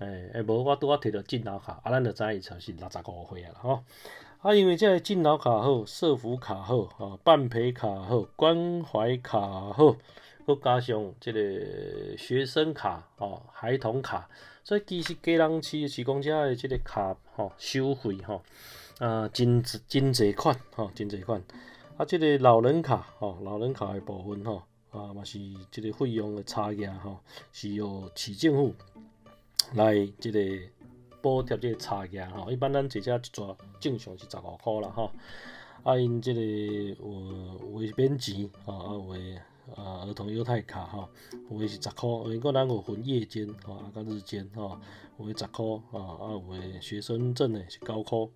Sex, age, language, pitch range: male, 30-49, Chinese, 100-130 Hz